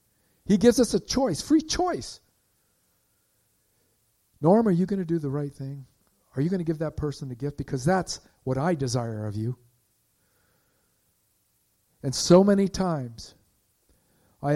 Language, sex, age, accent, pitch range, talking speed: English, male, 50-69, American, 125-170 Hz, 155 wpm